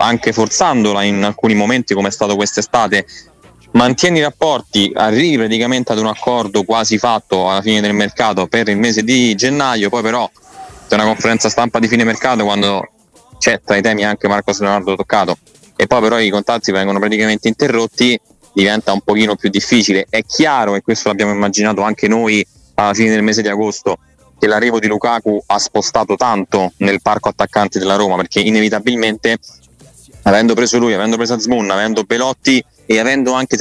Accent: native